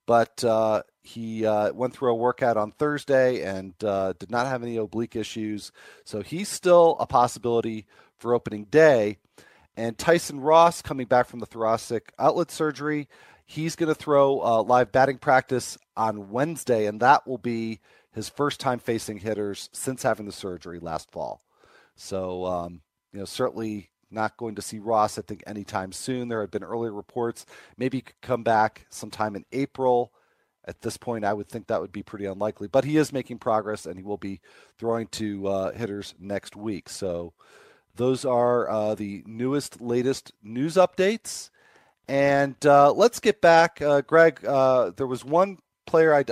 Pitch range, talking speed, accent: 105-140 Hz, 175 wpm, American